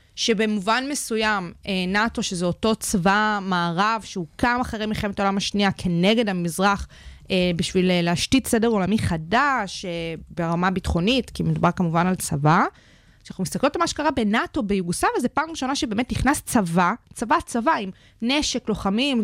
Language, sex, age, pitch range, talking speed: Hebrew, female, 20-39, 185-245 Hz, 135 wpm